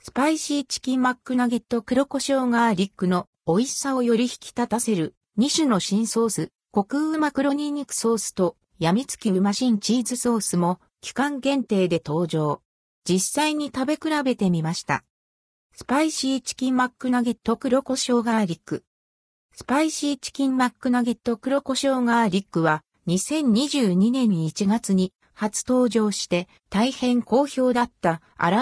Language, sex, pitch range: Japanese, female, 185-260 Hz